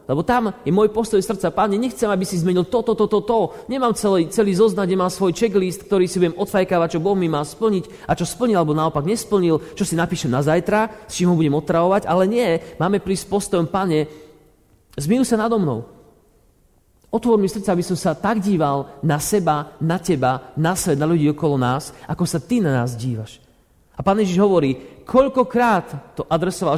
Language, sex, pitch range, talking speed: Slovak, male, 130-190 Hz, 200 wpm